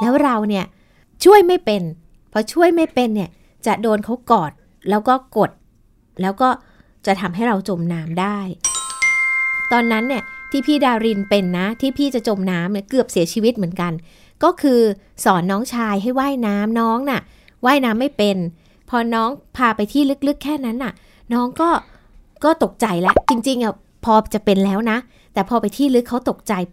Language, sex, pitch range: Thai, female, 205-275 Hz